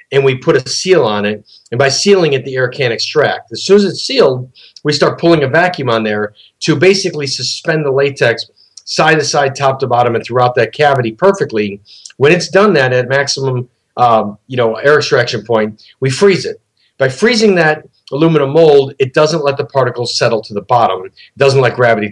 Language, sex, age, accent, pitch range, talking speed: English, male, 40-59, American, 115-150 Hz, 205 wpm